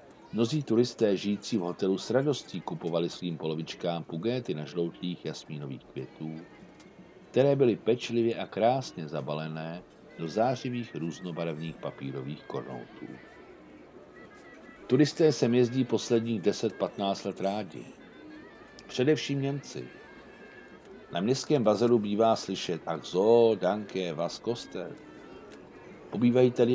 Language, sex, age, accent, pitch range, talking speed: Czech, male, 60-79, native, 80-120 Hz, 105 wpm